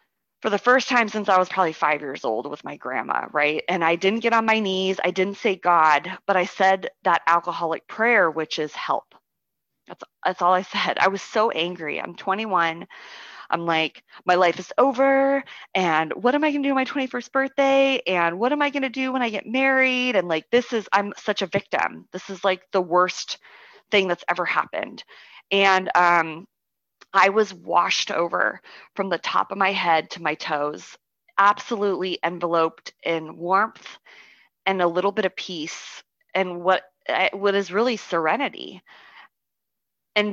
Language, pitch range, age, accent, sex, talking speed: English, 170-215 Hz, 20-39, American, female, 180 wpm